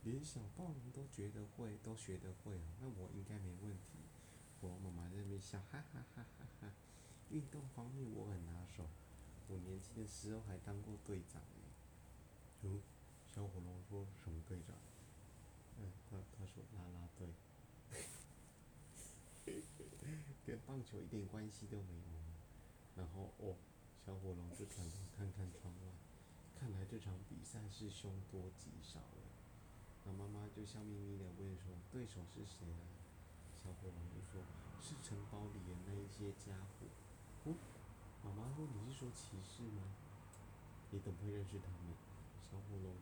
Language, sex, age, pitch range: Chinese, male, 30-49, 90-110 Hz